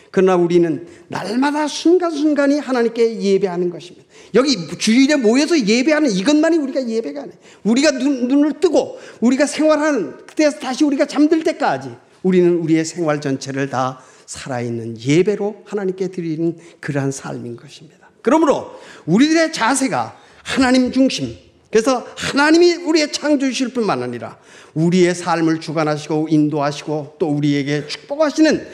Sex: male